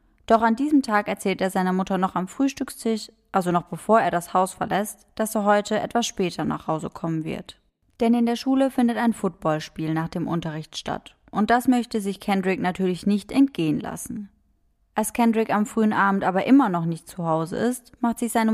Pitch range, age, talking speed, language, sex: 180-225 Hz, 20-39, 200 wpm, German, female